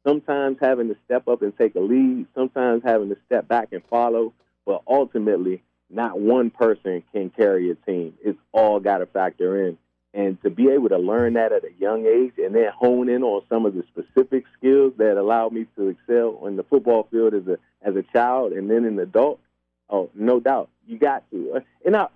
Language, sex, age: English, male, 30-49